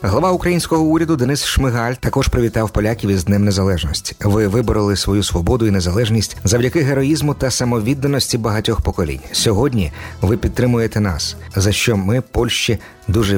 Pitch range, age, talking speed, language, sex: 95-125 Hz, 50-69, 145 wpm, Polish, male